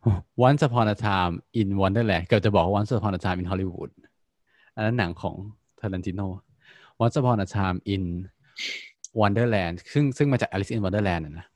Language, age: Thai, 20-39